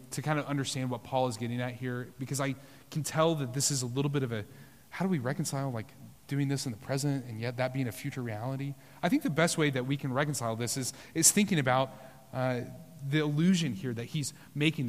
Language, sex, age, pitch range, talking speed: English, male, 30-49, 125-170 Hz, 240 wpm